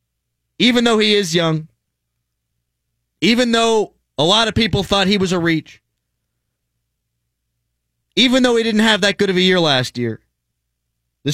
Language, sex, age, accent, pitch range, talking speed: English, male, 30-49, American, 120-190 Hz, 155 wpm